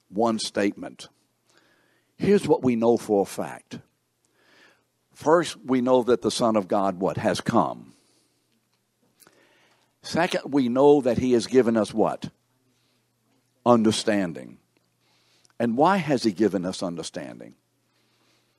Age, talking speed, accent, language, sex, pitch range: 60-79, 120 wpm, American, English, male, 105-130 Hz